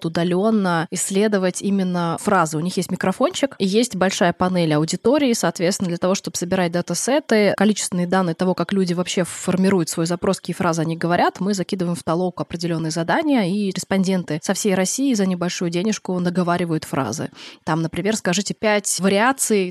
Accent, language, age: native, Russian, 20-39